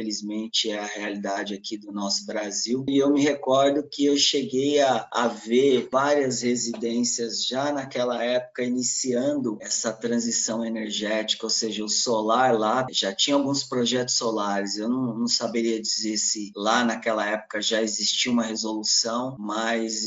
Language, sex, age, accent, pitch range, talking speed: Portuguese, male, 20-39, Brazilian, 110-130 Hz, 150 wpm